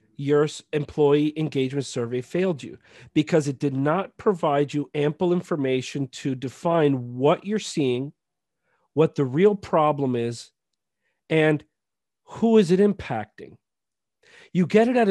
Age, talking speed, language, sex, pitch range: 40-59, 130 wpm, English, male, 130-170 Hz